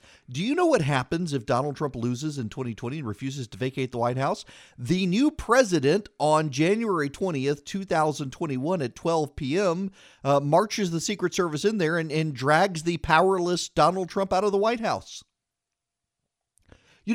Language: English